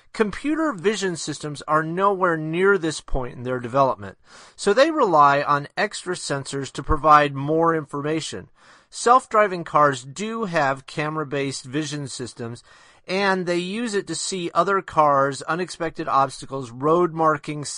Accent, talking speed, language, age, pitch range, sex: American, 135 wpm, English, 30-49, 140-175 Hz, male